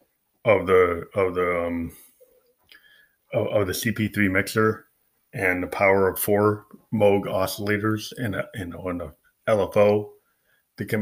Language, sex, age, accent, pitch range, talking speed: English, male, 20-39, American, 95-110 Hz, 130 wpm